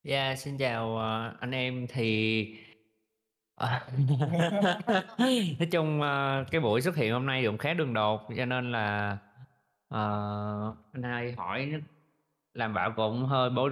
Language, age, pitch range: Vietnamese, 20-39, 110-160 Hz